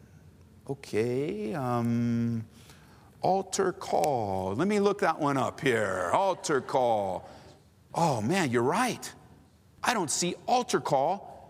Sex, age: male, 50-69